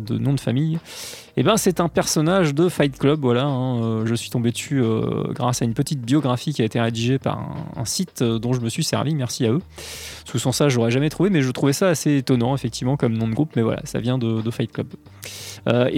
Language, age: English, 20-39